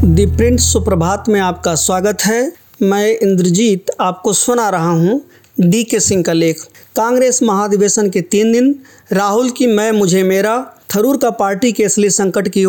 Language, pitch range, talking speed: English, 200-240 Hz, 160 wpm